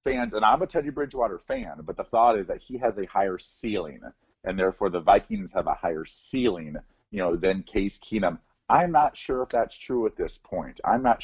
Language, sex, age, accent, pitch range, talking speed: English, male, 40-59, American, 90-120 Hz, 220 wpm